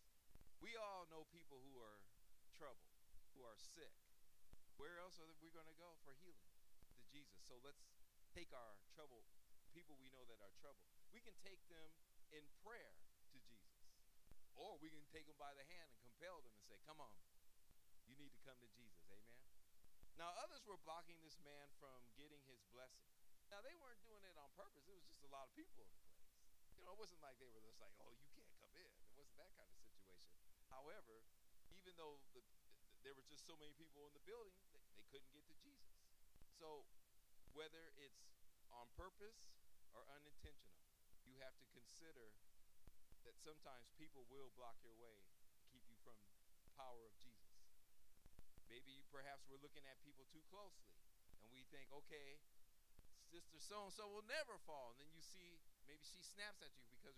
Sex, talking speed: male, 180 wpm